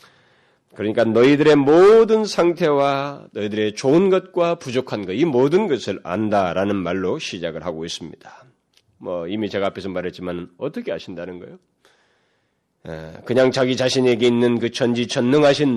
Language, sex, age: Korean, male, 40-59